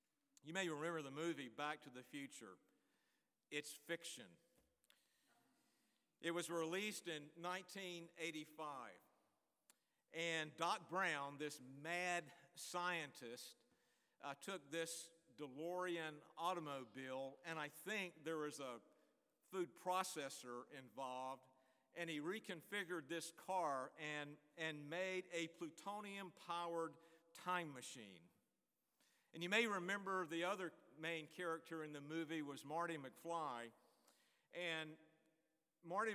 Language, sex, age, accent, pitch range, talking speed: English, male, 50-69, American, 150-180 Hz, 105 wpm